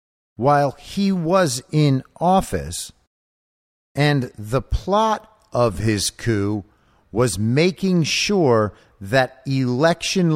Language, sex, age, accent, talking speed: English, male, 50-69, American, 95 wpm